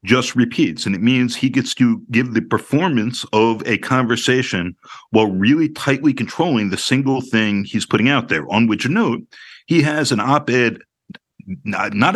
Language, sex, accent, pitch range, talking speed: English, male, American, 105-135 Hz, 170 wpm